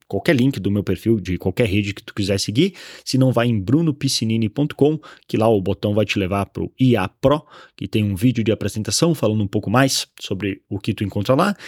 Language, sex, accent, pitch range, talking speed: Portuguese, male, Brazilian, 105-140 Hz, 225 wpm